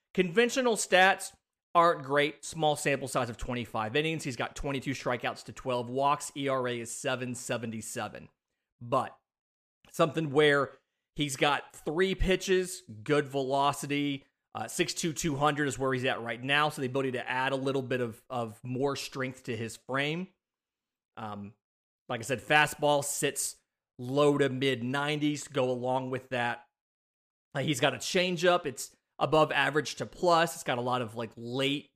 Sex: male